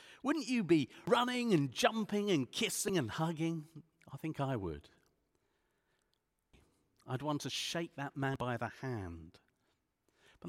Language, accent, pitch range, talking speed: English, British, 120-170 Hz, 135 wpm